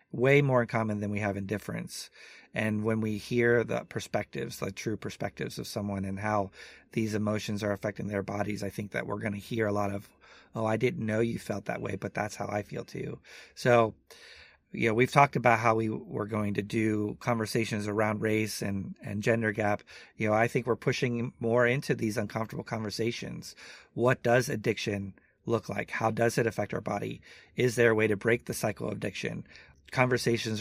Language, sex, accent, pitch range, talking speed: English, male, American, 105-120 Hz, 205 wpm